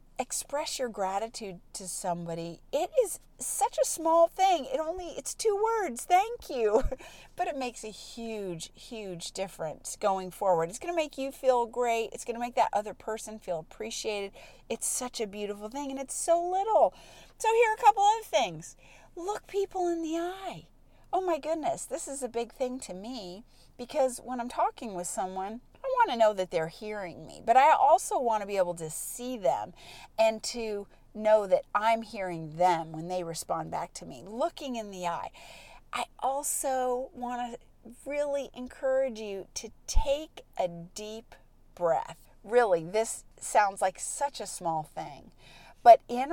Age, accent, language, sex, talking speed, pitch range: 40-59, American, English, female, 175 wpm, 190-280 Hz